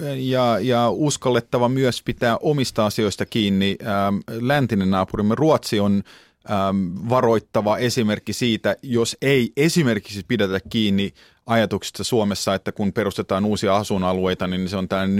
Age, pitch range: 30-49, 95-120 Hz